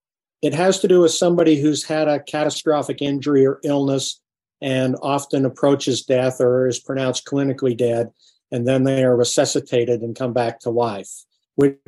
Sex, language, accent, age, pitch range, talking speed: male, English, American, 50-69, 125-150 Hz, 165 wpm